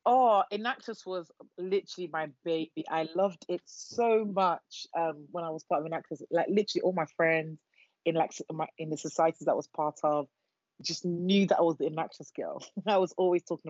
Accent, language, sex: British, English, female